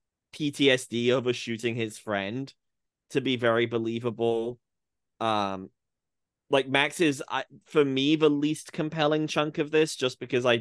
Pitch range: 115-140 Hz